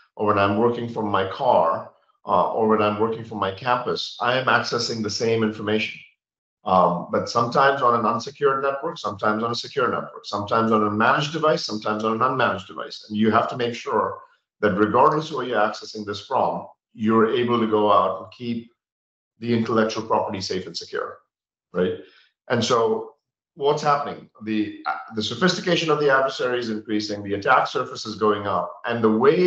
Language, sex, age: English, male, 50-69